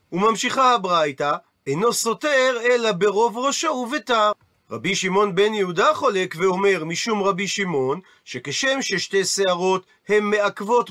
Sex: male